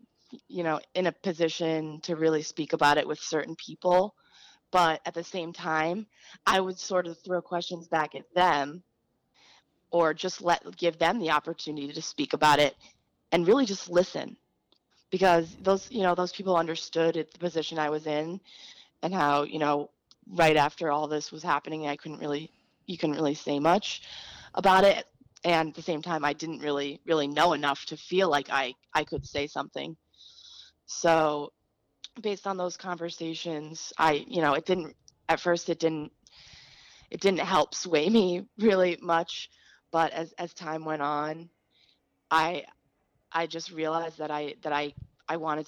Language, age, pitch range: English, 20-39, 150-175 Hz